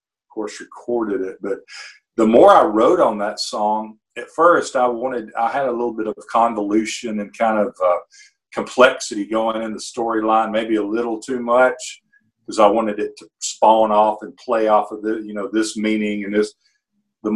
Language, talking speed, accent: English, 190 wpm, American